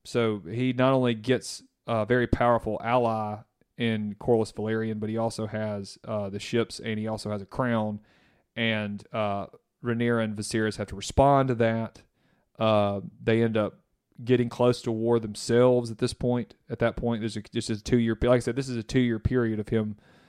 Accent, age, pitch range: American, 30-49, 105-120 Hz